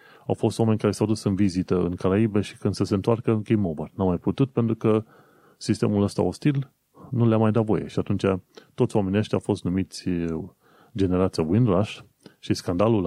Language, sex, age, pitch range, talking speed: Romanian, male, 30-49, 90-115 Hz, 195 wpm